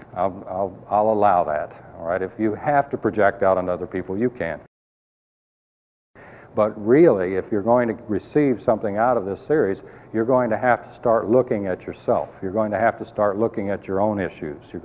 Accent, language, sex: American, English, male